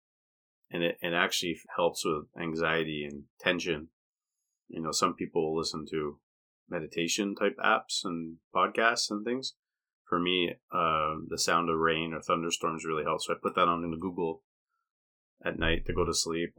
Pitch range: 80-105 Hz